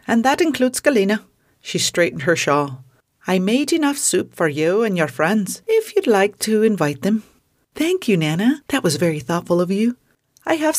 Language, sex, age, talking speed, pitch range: English, female, 40-59, 190 wpm, 160-225 Hz